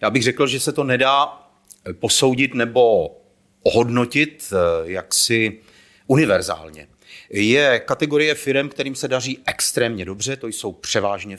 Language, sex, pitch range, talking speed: Czech, male, 105-145 Hz, 120 wpm